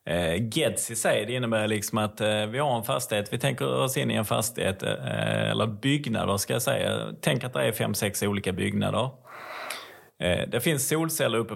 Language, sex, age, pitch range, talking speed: Swedish, male, 30-49, 105-120 Hz, 185 wpm